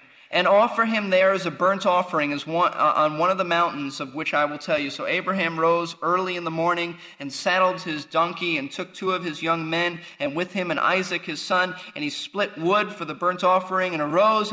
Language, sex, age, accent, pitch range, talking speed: English, male, 30-49, American, 165-205 Hz, 235 wpm